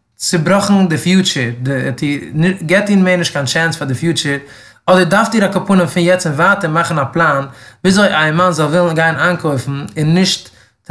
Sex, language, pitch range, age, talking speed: male, English, 145-185 Hz, 20-39, 155 wpm